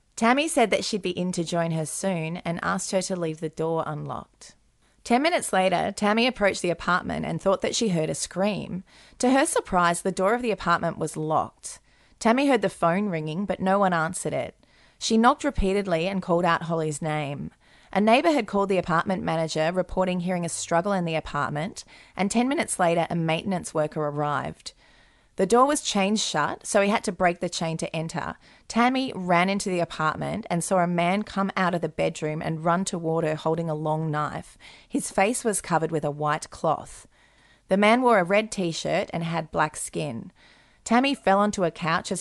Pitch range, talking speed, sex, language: 160-200 Hz, 200 wpm, female, English